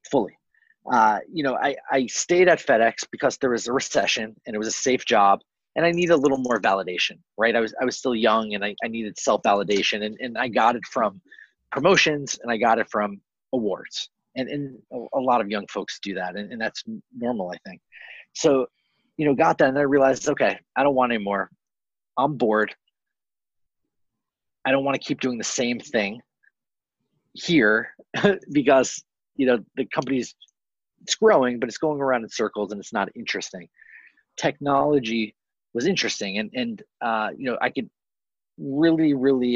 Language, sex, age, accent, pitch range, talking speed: English, male, 30-49, American, 105-140 Hz, 185 wpm